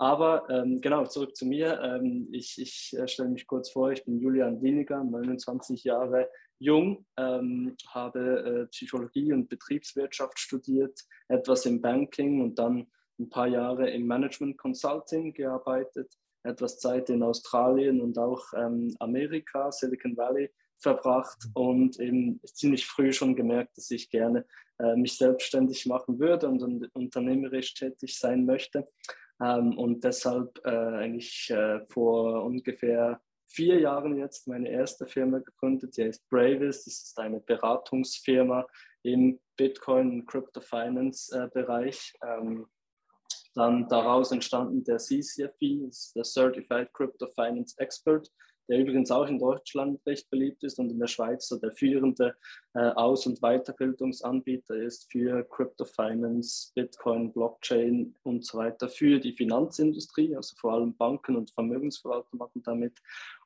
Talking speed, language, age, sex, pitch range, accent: 135 wpm, German, 20-39, male, 120-135 Hz, German